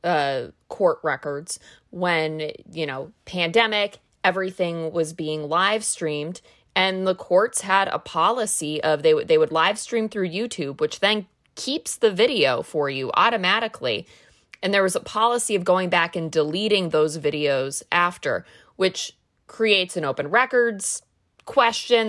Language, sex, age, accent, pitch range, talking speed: English, female, 20-39, American, 170-230 Hz, 145 wpm